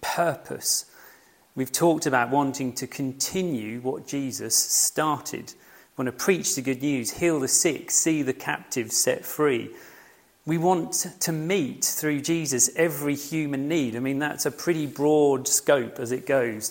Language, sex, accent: English, male, British